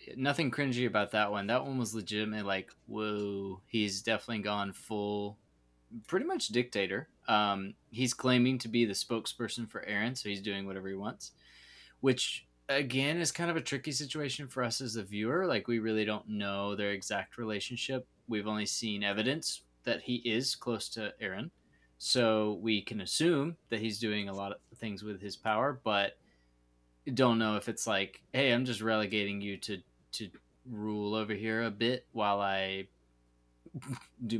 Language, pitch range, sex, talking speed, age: English, 100-120 Hz, male, 175 wpm, 20-39